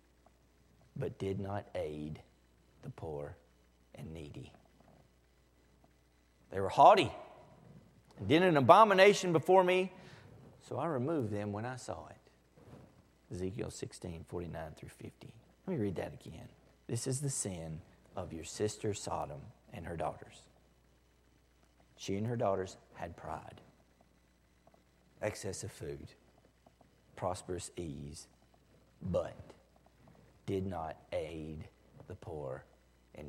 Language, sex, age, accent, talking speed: English, male, 50-69, American, 115 wpm